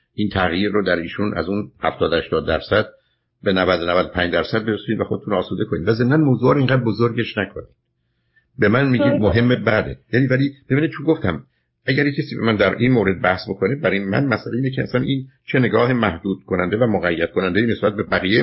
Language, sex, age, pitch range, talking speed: Persian, male, 50-69, 105-140 Hz, 190 wpm